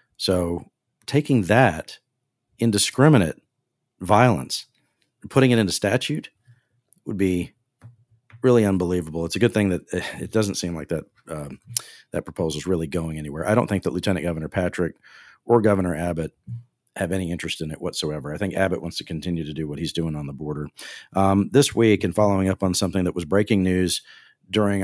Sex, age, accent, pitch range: male, 40-59, American, 85-115 Hz